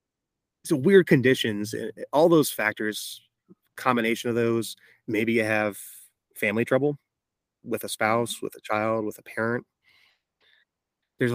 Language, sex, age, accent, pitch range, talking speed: English, male, 30-49, American, 105-125 Hz, 125 wpm